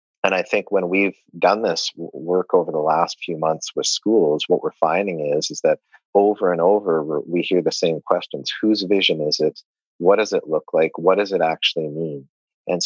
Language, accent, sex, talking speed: English, American, male, 205 wpm